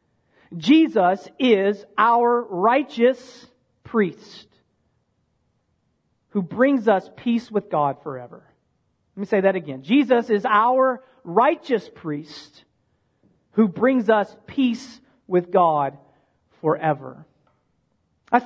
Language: English